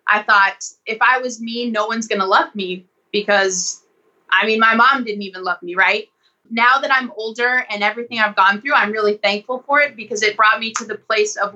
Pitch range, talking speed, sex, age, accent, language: 200-230 Hz, 230 wpm, female, 20-39, American, English